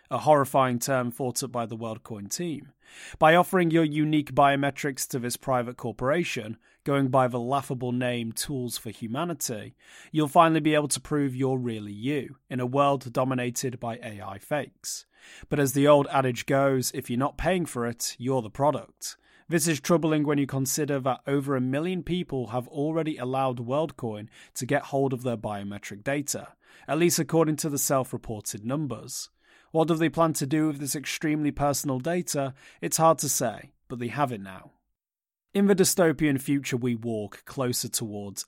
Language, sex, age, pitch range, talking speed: English, male, 30-49, 120-150 Hz, 180 wpm